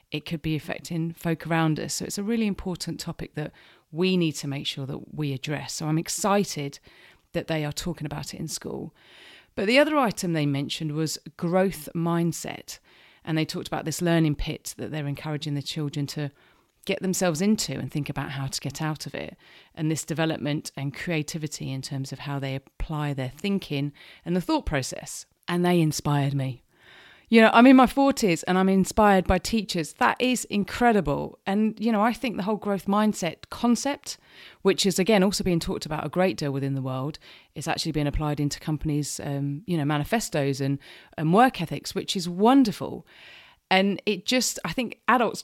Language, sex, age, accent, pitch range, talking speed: English, female, 40-59, British, 145-195 Hz, 195 wpm